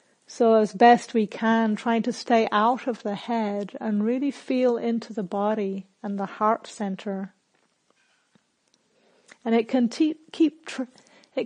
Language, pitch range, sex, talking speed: English, 210-245 Hz, female, 150 wpm